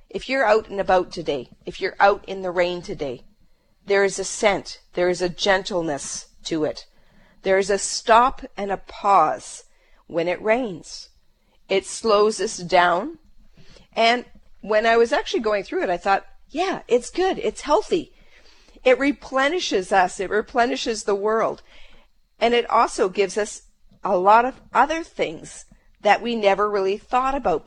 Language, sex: English, female